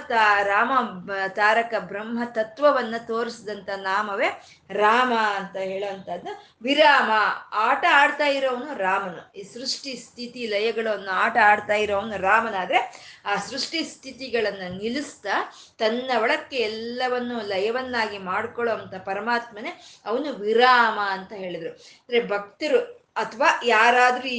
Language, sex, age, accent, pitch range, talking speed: Kannada, female, 20-39, native, 205-260 Hz, 100 wpm